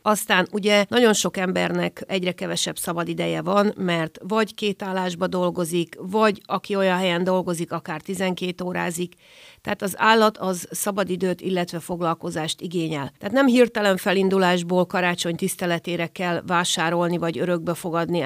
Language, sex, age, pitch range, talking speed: Hungarian, female, 40-59, 170-195 Hz, 130 wpm